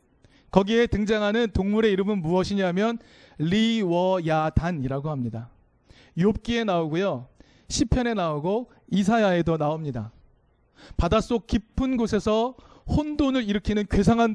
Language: Korean